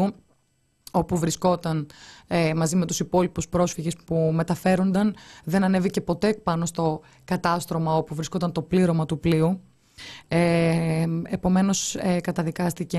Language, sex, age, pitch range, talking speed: Greek, female, 20-39, 160-190 Hz, 105 wpm